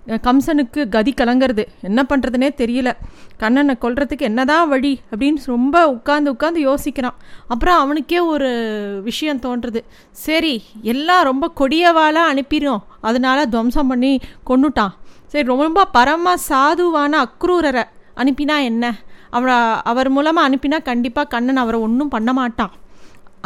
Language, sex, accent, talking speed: Tamil, female, native, 120 wpm